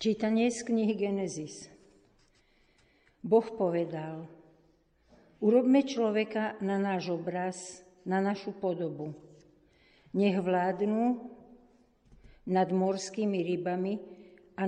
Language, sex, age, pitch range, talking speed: Slovak, female, 50-69, 165-205 Hz, 80 wpm